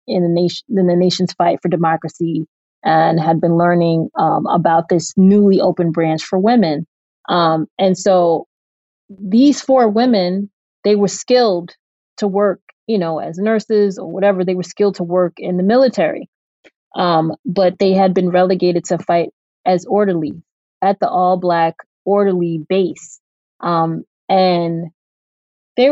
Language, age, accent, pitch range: English, 20-39, American, 175-210 Hz